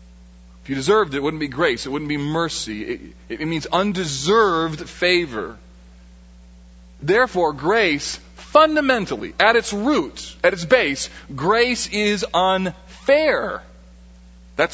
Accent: American